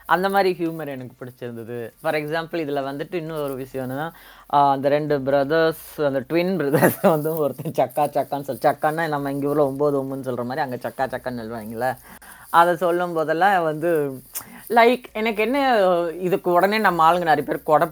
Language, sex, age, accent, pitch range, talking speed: Tamil, female, 20-39, native, 140-170 Hz, 160 wpm